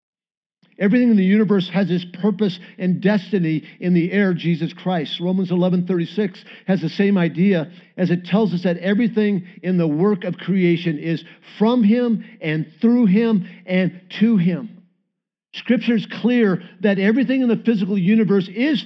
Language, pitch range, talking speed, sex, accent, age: English, 180-220 Hz, 160 wpm, male, American, 50-69